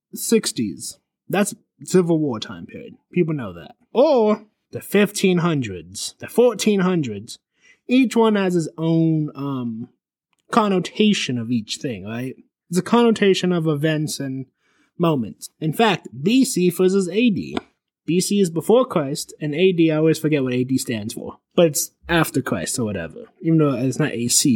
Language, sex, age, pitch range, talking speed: English, male, 20-39, 145-195 Hz, 150 wpm